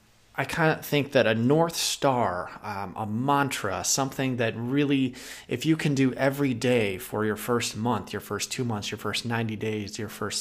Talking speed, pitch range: 195 wpm, 105-135 Hz